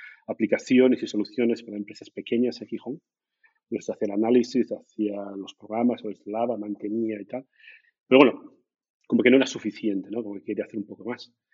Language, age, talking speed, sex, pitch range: Spanish, 40-59, 165 wpm, male, 110-135 Hz